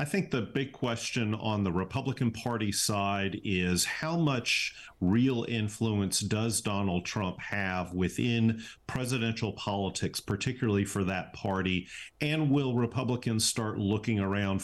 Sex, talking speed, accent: male, 130 wpm, American